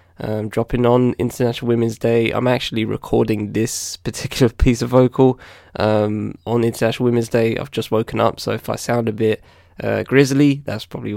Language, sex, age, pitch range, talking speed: English, male, 10-29, 100-125 Hz, 175 wpm